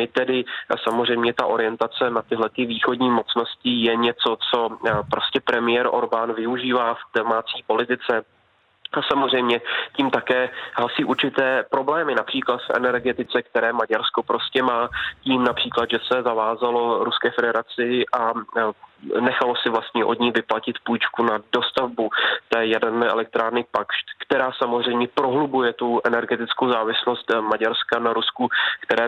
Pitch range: 115-125 Hz